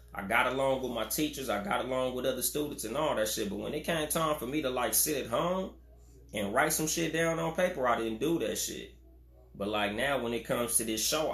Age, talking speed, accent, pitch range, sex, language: 20-39, 260 wpm, American, 85-135 Hz, male, English